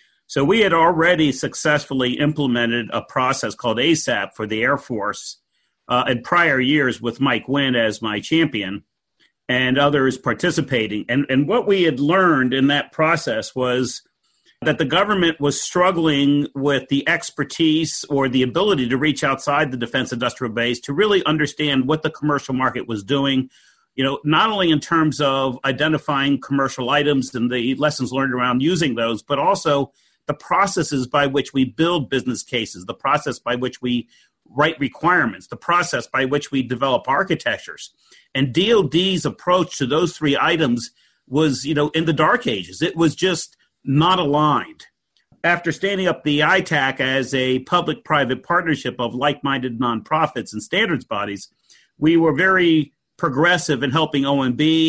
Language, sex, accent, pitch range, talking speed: English, male, American, 130-155 Hz, 160 wpm